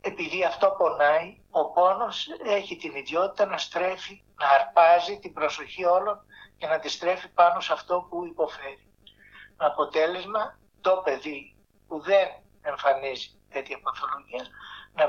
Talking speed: 135 wpm